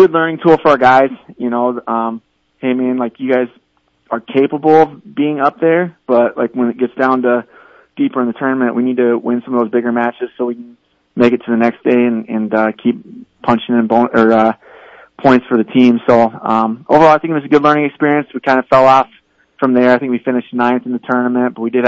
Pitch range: 115-130 Hz